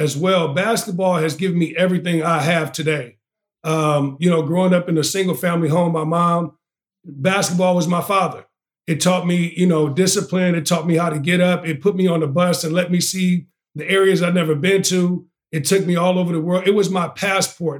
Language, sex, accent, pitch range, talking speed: English, male, American, 170-195 Hz, 225 wpm